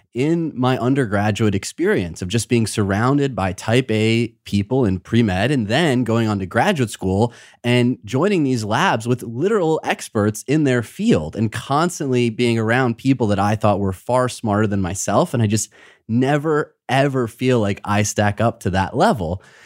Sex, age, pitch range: male, 30-49, 105-135 Hz